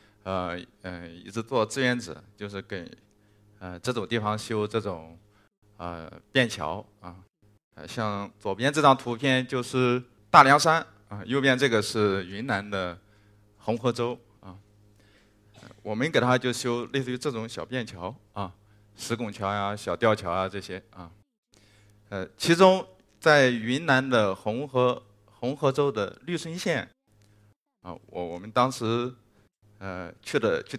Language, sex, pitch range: Chinese, male, 105-130 Hz